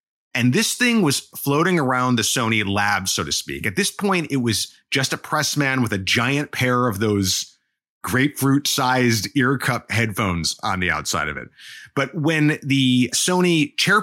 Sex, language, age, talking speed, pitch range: male, English, 30-49, 170 wpm, 115-155 Hz